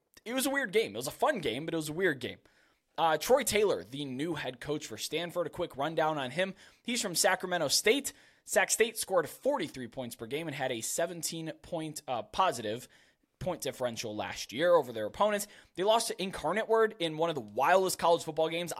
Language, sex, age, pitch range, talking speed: English, male, 20-39, 130-180 Hz, 215 wpm